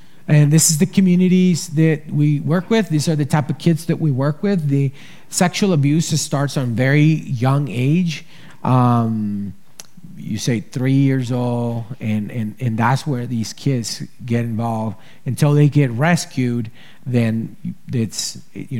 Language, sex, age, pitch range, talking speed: English, male, 40-59, 120-155 Hz, 155 wpm